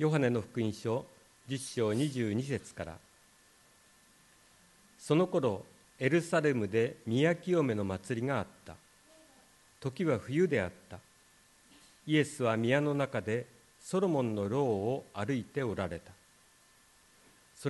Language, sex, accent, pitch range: Japanese, male, native, 115-155 Hz